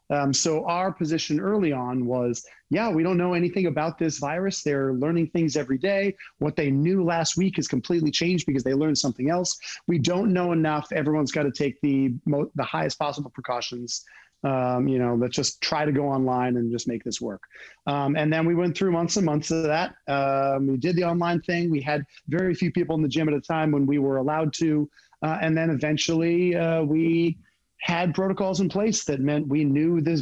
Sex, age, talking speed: male, 40-59, 215 wpm